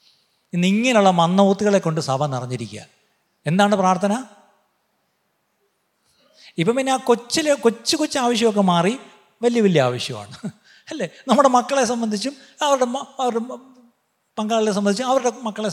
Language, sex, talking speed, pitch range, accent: Malayalam, male, 110 wpm, 165-245 Hz, native